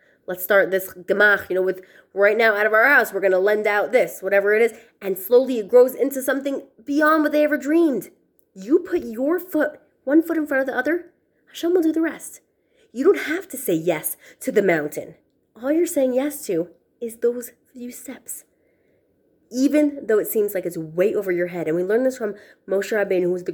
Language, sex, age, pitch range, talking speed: English, female, 20-39, 180-300 Hz, 220 wpm